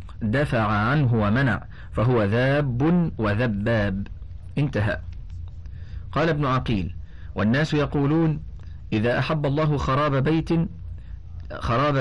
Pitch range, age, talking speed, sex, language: 95-140 Hz, 40-59, 90 wpm, male, Arabic